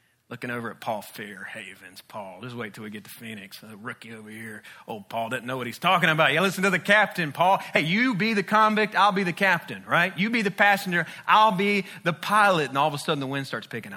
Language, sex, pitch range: English, male, 125-165 Hz